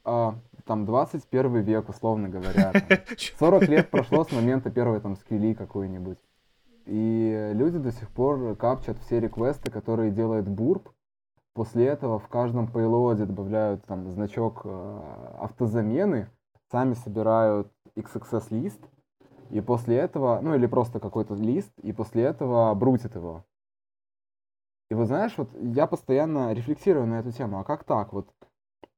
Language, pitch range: Ukrainian, 110-130 Hz